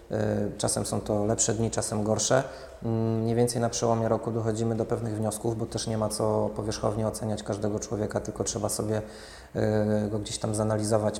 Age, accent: 20-39, native